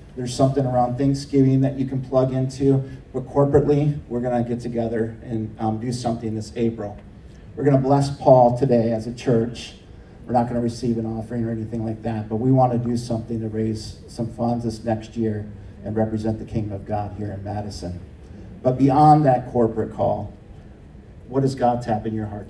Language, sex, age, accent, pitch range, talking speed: English, male, 40-59, American, 105-125 Hz, 205 wpm